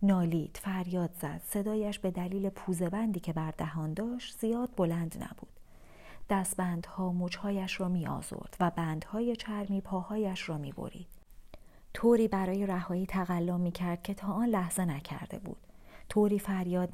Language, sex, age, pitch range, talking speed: Persian, female, 40-59, 175-210 Hz, 130 wpm